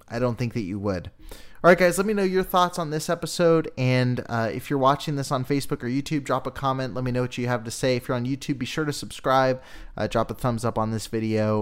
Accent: American